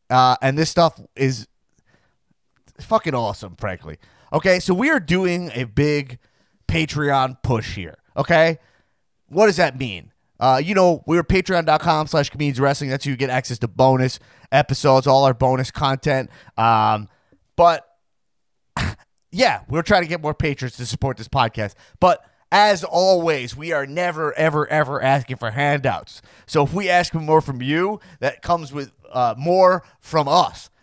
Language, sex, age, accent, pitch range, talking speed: English, male, 30-49, American, 130-175 Hz, 160 wpm